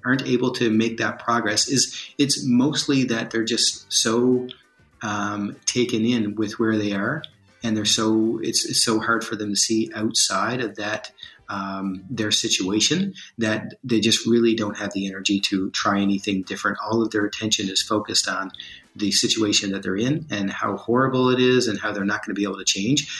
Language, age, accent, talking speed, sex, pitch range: Romanian, 30-49, American, 195 wpm, male, 105-120 Hz